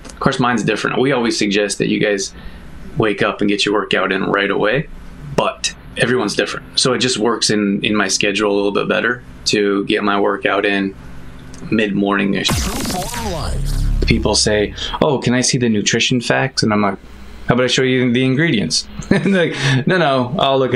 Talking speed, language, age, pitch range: 190 wpm, English, 20-39, 105-125 Hz